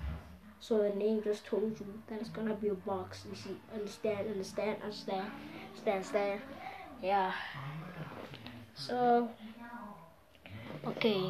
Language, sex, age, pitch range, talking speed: English, female, 20-39, 195-230 Hz, 115 wpm